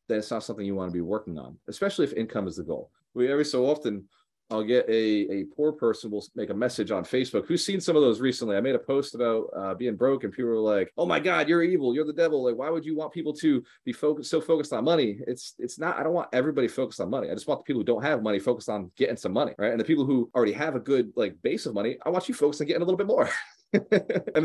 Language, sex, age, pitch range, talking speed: English, male, 30-49, 110-160 Hz, 290 wpm